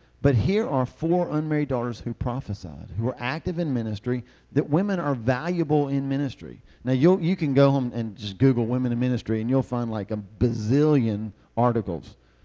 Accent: American